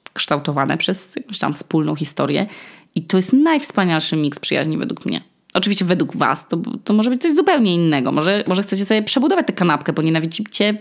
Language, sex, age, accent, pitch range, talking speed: Polish, female, 20-39, native, 160-215 Hz, 185 wpm